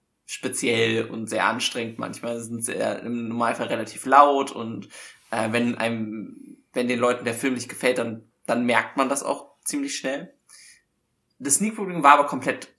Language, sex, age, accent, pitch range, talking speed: German, male, 20-39, German, 120-150 Hz, 165 wpm